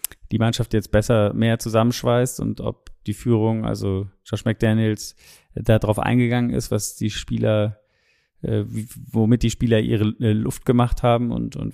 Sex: male